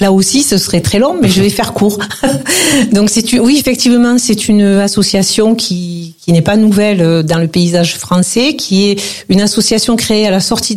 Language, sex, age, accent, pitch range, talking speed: French, female, 40-59, French, 185-225 Hz, 200 wpm